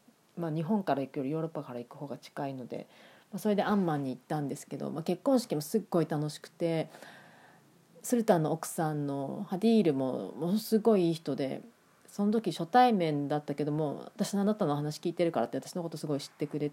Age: 30-49